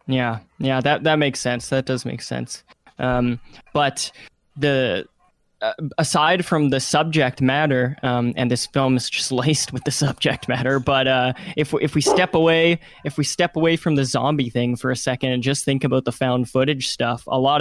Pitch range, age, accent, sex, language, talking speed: 120-140 Hz, 20-39, American, male, English, 200 wpm